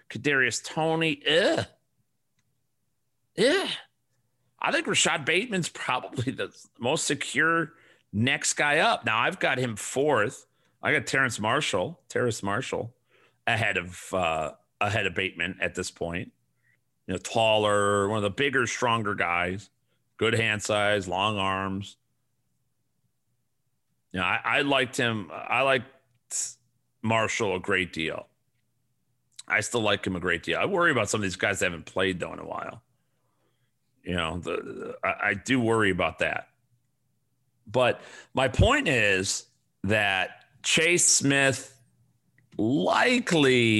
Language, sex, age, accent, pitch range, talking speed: English, male, 40-59, American, 95-130 Hz, 135 wpm